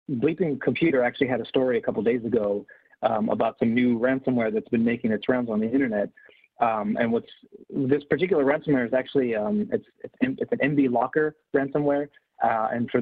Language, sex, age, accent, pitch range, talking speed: English, male, 30-49, American, 120-150 Hz, 200 wpm